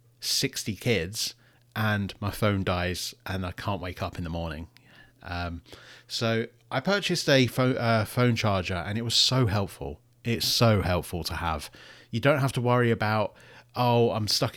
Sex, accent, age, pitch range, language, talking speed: male, British, 30-49, 100-125 Hz, English, 170 wpm